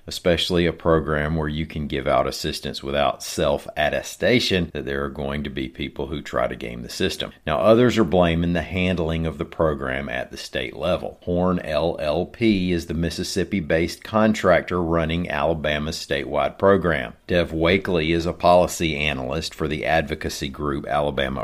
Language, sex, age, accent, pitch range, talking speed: English, male, 50-69, American, 75-95 Hz, 160 wpm